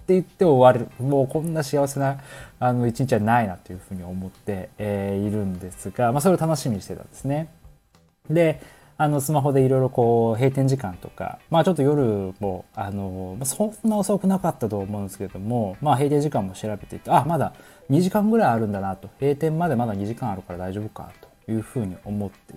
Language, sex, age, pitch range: Japanese, male, 20-39, 100-145 Hz